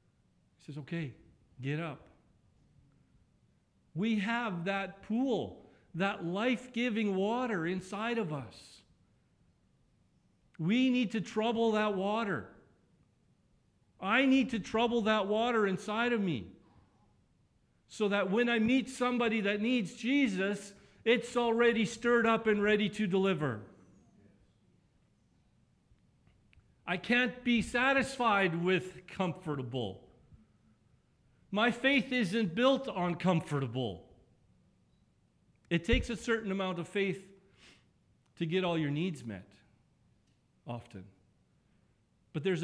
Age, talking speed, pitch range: 50-69, 105 wpm, 150-220 Hz